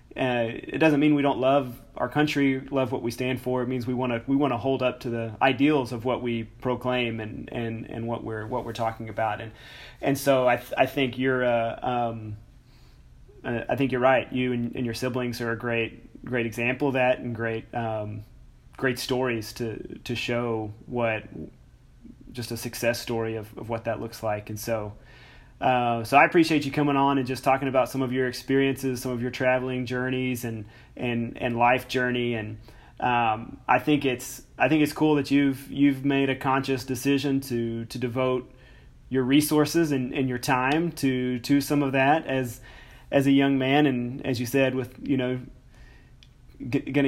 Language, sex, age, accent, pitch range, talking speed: English, male, 30-49, American, 120-135 Hz, 200 wpm